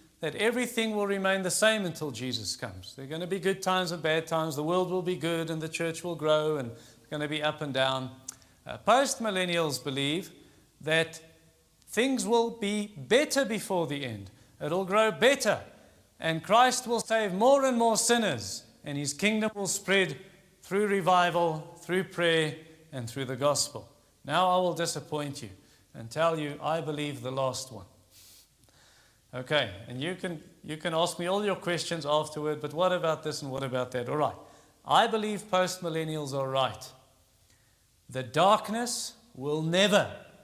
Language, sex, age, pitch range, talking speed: English, male, 50-69, 135-190 Hz, 175 wpm